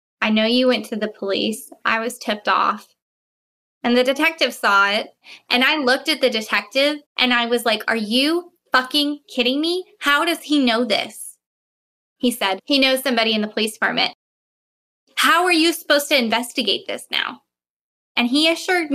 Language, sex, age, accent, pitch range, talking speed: English, female, 10-29, American, 210-255 Hz, 175 wpm